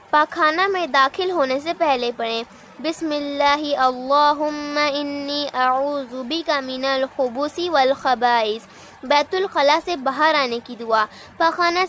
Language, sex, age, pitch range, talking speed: Hindi, female, 20-39, 250-315 Hz, 95 wpm